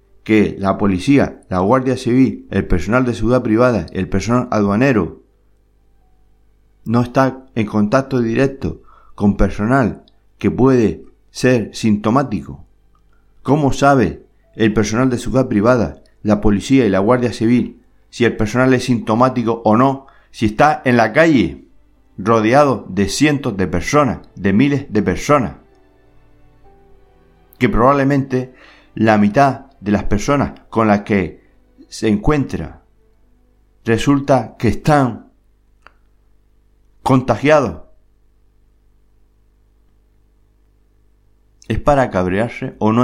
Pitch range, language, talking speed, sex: 100-120 Hz, Spanish, 110 wpm, male